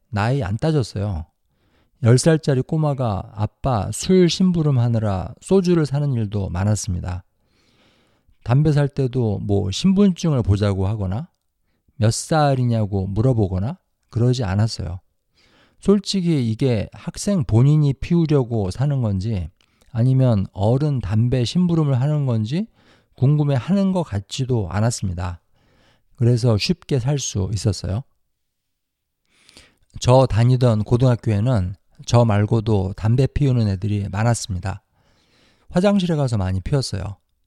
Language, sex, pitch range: Korean, male, 100-140 Hz